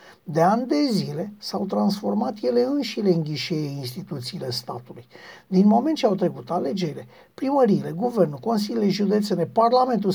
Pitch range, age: 175-240 Hz, 50-69